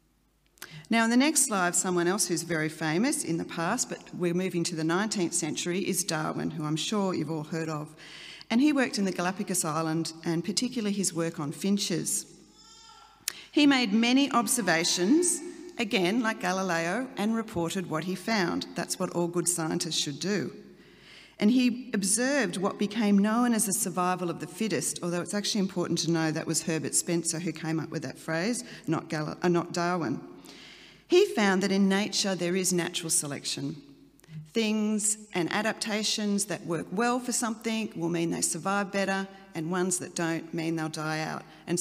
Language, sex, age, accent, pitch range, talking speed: English, female, 40-59, Australian, 165-210 Hz, 180 wpm